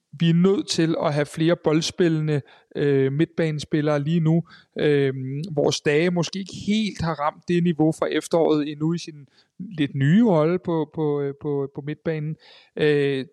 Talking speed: 160 wpm